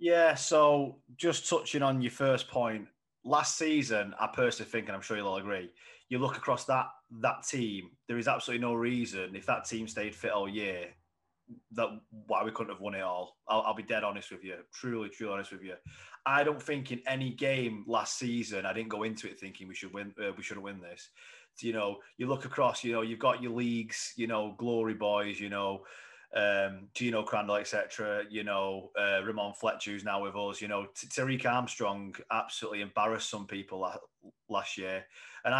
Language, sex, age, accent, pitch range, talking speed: English, male, 30-49, British, 105-125 Hz, 205 wpm